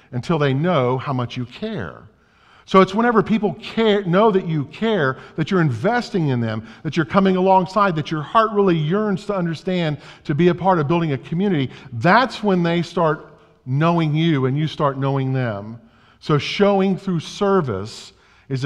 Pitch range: 135-185 Hz